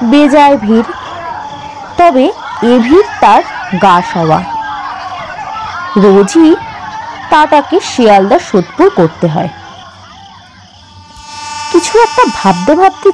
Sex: female